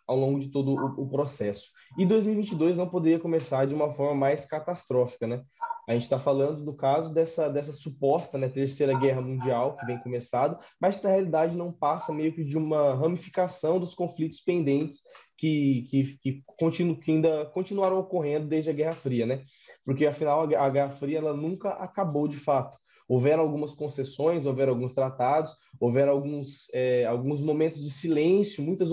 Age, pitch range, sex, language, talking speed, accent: 20-39, 135-170 Hz, male, Portuguese, 180 wpm, Brazilian